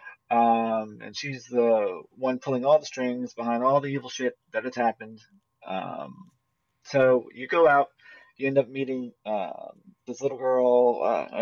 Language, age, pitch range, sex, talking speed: English, 20-39, 115-140 Hz, male, 165 wpm